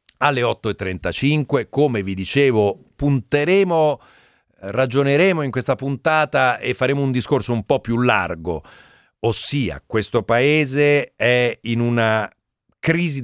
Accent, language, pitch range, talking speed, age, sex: native, Italian, 100-135 Hz, 115 wpm, 40-59, male